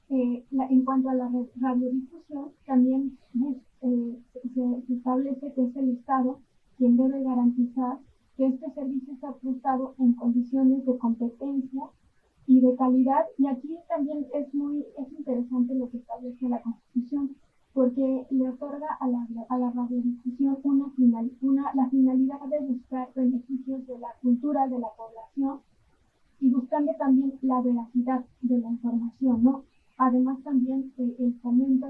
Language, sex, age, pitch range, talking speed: Spanish, female, 20-39, 245-275 Hz, 145 wpm